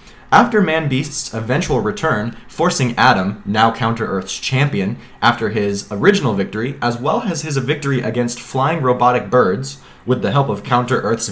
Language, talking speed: English, 150 wpm